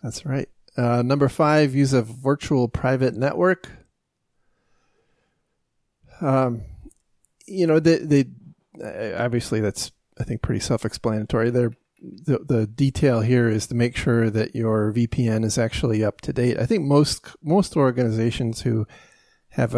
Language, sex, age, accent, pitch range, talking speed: English, male, 30-49, American, 110-130 Hz, 135 wpm